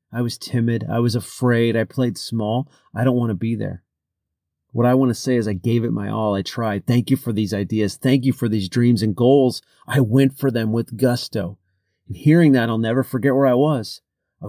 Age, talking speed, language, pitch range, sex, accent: 40-59, 230 wpm, English, 105-125 Hz, male, American